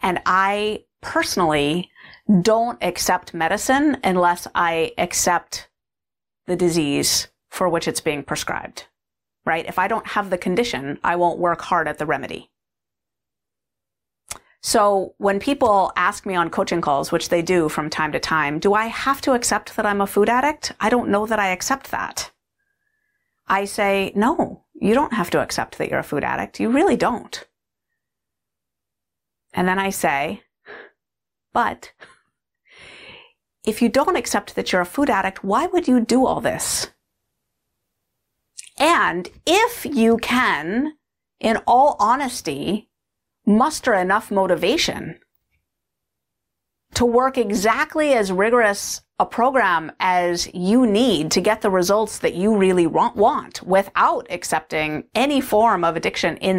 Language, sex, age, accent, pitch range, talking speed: English, female, 30-49, American, 175-245 Hz, 140 wpm